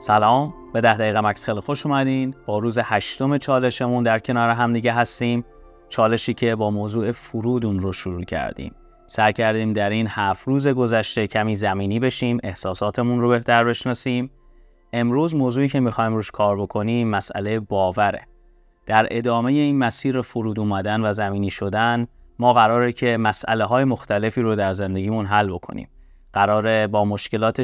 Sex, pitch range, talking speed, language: male, 100-120 Hz, 155 wpm, Persian